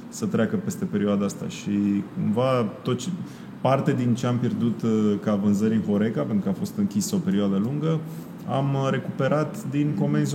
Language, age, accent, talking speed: Romanian, 30-49, native, 180 wpm